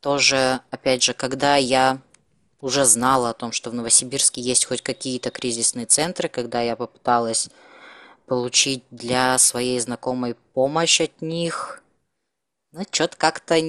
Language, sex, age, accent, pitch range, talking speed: Russian, female, 20-39, native, 120-150 Hz, 130 wpm